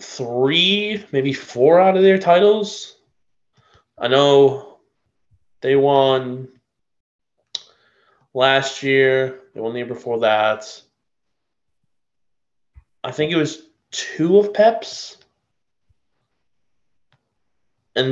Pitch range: 125-150 Hz